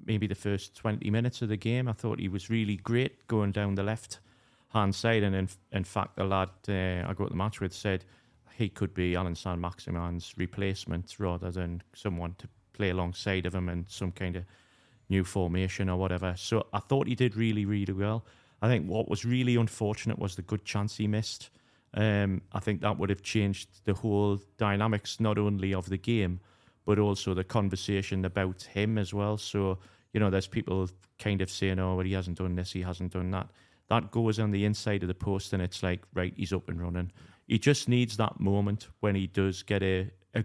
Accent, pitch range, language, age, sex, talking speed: British, 95-110 Hz, English, 30-49, male, 215 wpm